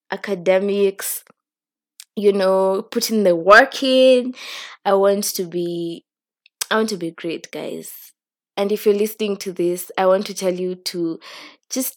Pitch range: 175-210 Hz